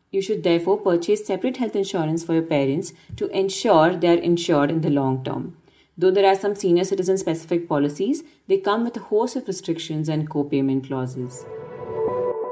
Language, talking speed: English, 175 wpm